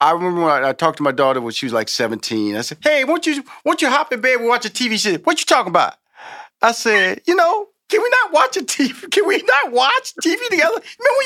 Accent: American